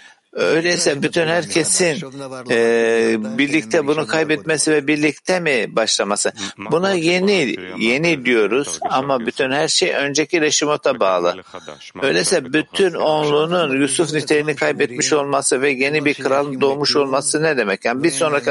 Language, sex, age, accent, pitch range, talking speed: Turkish, male, 60-79, native, 135-165 Hz, 130 wpm